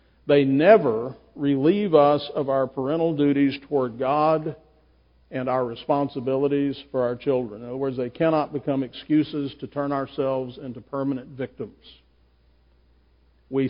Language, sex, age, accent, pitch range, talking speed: English, male, 50-69, American, 120-155 Hz, 130 wpm